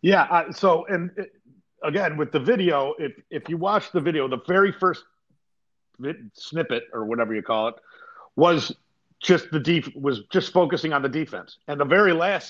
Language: English